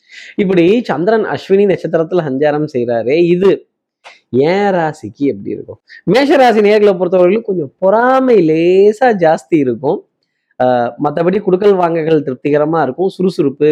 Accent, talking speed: native, 110 wpm